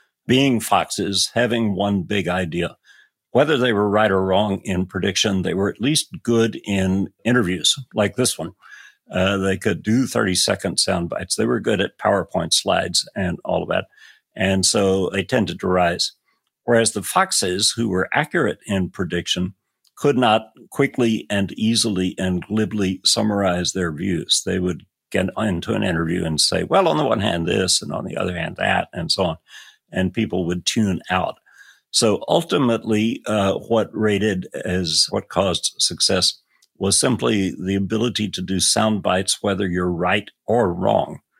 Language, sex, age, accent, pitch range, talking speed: English, male, 60-79, American, 95-110 Hz, 165 wpm